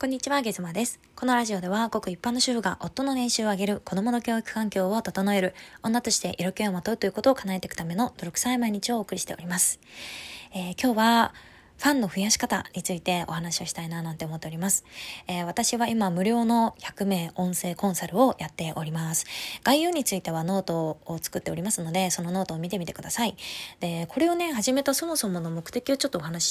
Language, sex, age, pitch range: Japanese, female, 20-39, 175-235 Hz